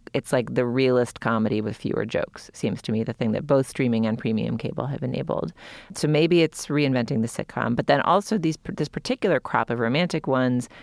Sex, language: female, English